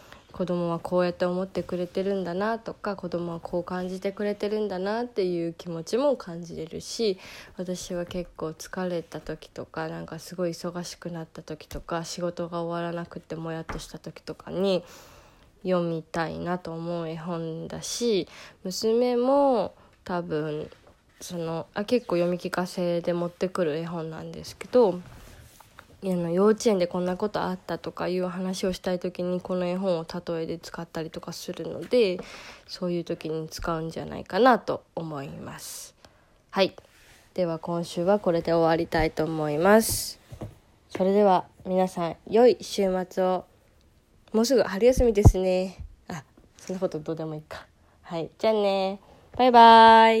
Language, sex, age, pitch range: Japanese, female, 20-39, 170-195 Hz